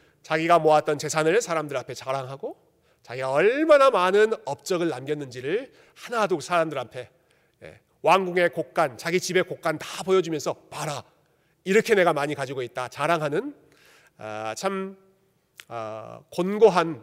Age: 40-59